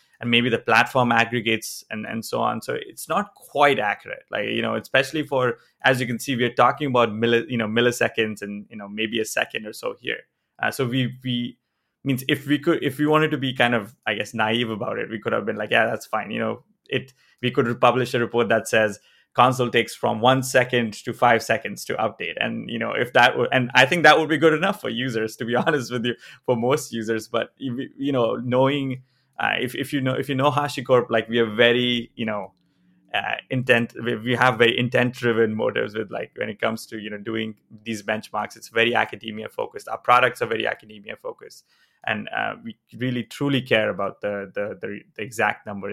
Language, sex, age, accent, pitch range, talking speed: English, male, 20-39, Indian, 115-130 Hz, 230 wpm